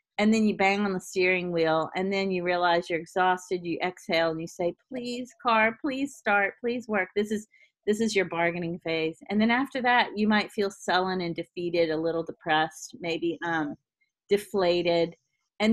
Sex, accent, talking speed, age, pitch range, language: female, American, 185 wpm, 40-59, 170-215 Hz, English